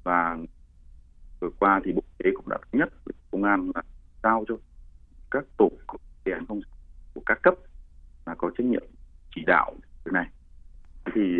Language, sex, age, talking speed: Vietnamese, male, 30-49, 165 wpm